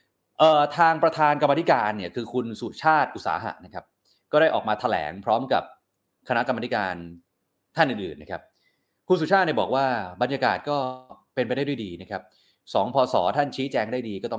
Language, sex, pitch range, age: Thai, male, 105-145 Hz, 20-39